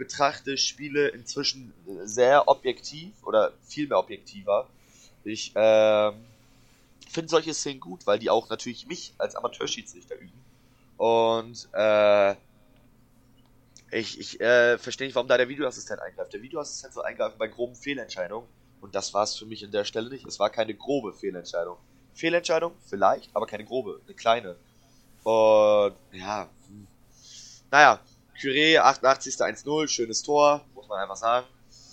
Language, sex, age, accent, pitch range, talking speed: German, male, 20-39, German, 115-135 Hz, 145 wpm